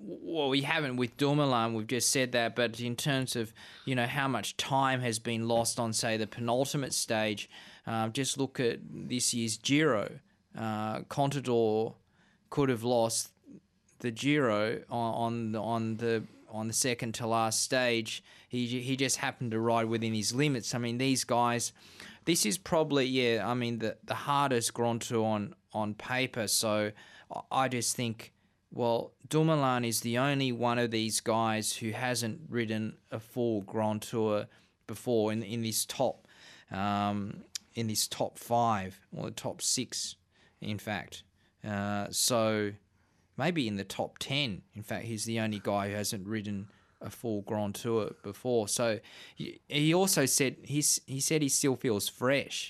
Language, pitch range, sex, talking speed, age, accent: English, 110-130 Hz, male, 165 wpm, 20-39, Australian